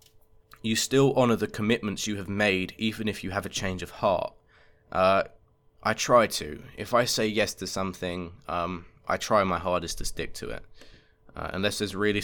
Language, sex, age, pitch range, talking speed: English, male, 20-39, 95-110 Hz, 190 wpm